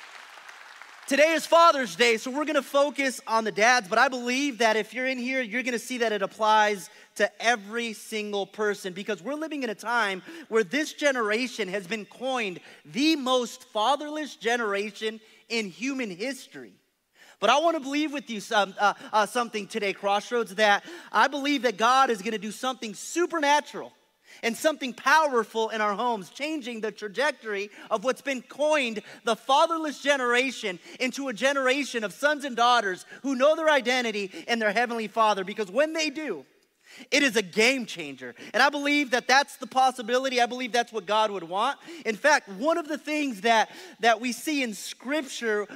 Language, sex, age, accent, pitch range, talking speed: English, male, 30-49, American, 215-275 Hz, 180 wpm